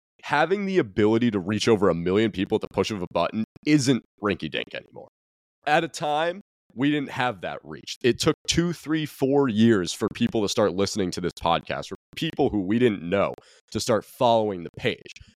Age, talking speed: 30-49, 205 wpm